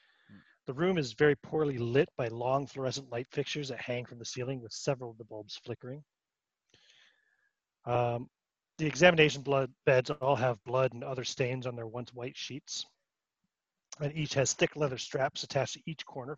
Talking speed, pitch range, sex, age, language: 170 wpm, 120-155 Hz, male, 30-49, English